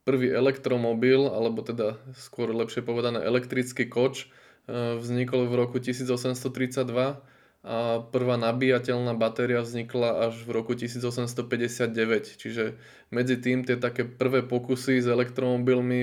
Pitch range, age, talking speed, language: 115-125 Hz, 20-39, 115 wpm, Slovak